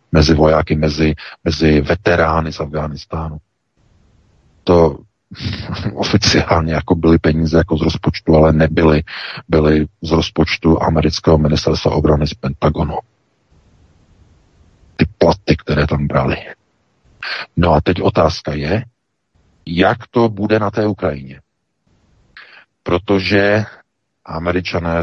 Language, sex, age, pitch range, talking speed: Czech, male, 50-69, 80-90 Hz, 100 wpm